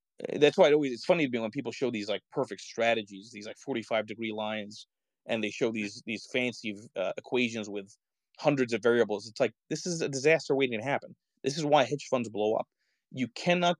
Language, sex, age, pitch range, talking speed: Czech, male, 30-49, 110-135 Hz, 220 wpm